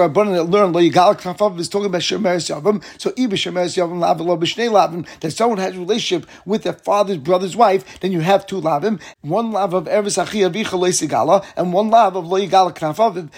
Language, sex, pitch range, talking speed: English, male, 175-210 Hz, 195 wpm